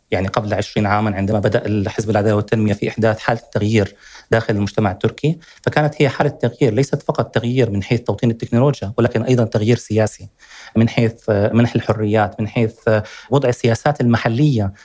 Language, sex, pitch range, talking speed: Arabic, male, 110-150 Hz, 160 wpm